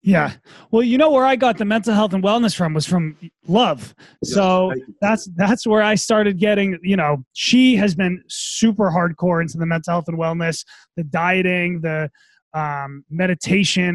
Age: 20-39